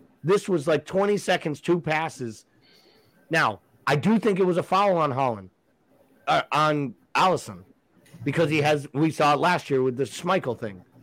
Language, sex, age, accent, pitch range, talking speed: English, male, 30-49, American, 130-165 Hz, 175 wpm